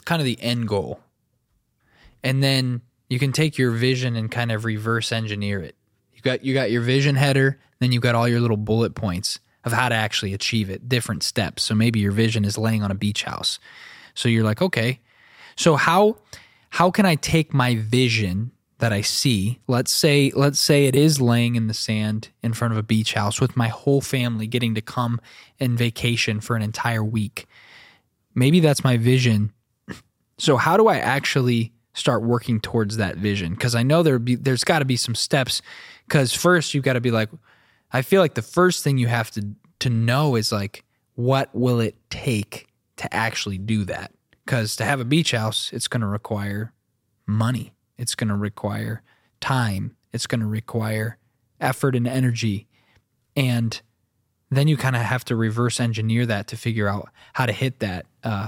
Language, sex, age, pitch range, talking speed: English, male, 20-39, 110-130 Hz, 195 wpm